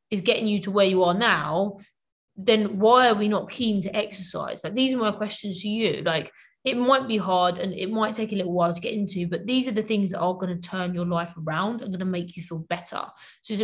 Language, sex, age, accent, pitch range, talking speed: English, female, 20-39, British, 185-235 Hz, 265 wpm